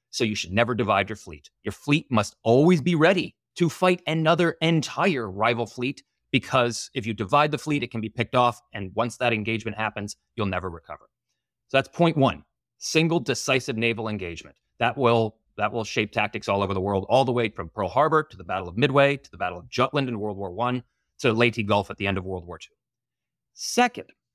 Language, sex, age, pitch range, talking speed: English, male, 30-49, 110-145 Hz, 210 wpm